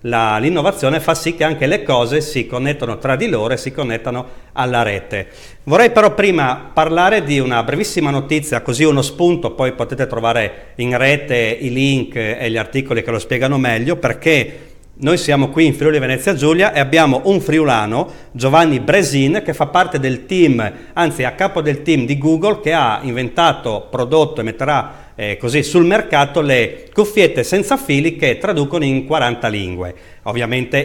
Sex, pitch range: male, 115-160 Hz